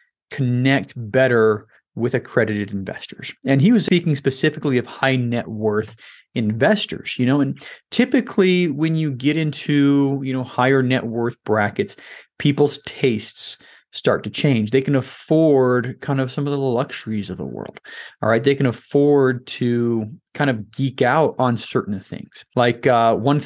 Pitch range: 120-145 Hz